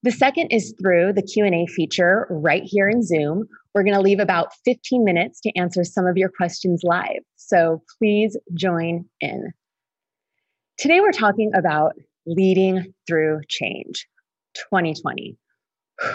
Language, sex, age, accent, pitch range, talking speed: English, female, 20-39, American, 170-215 Hz, 135 wpm